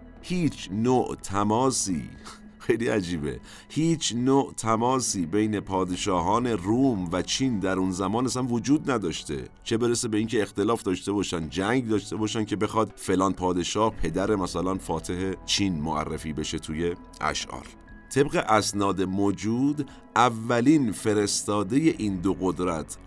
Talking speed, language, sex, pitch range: 125 wpm, Persian, male, 90-115 Hz